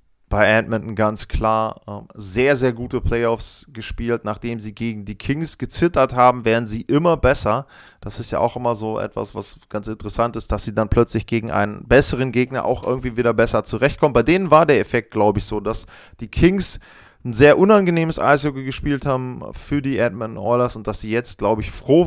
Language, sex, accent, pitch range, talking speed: German, male, German, 110-140 Hz, 195 wpm